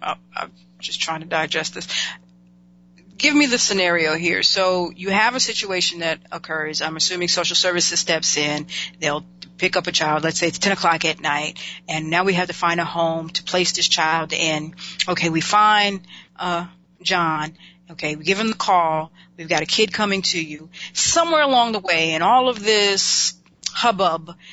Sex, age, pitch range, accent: female, 40-59, 170-205 Hz, American